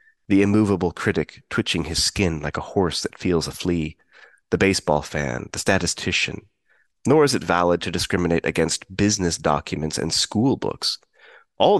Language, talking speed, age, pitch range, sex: English, 160 wpm, 30-49, 80-95 Hz, male